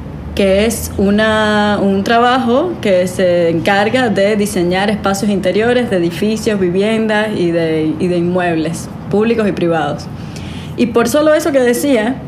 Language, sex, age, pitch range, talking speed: Spanish, female, 20-39, 185-225 Hz, 140 wpm